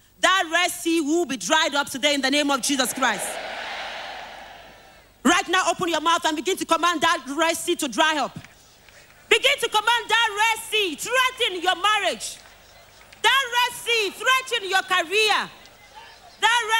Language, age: English, 40-59